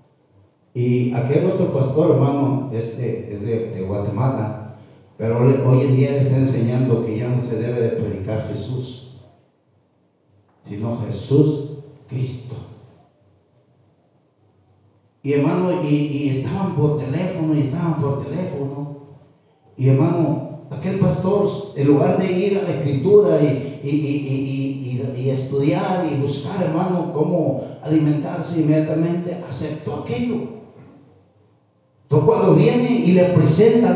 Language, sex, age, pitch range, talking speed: Spanish, male, 50-69, 120-160 Hz, 130 wpm